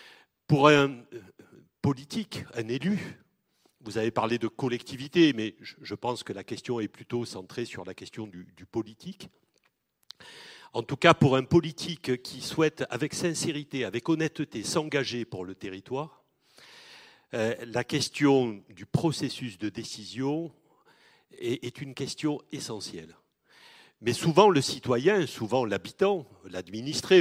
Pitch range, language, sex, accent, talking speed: 115-165 Hz, French, male, French, 130 wpm